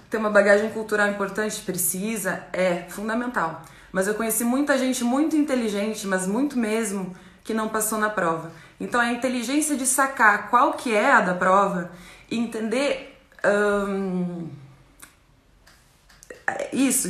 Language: Portuguese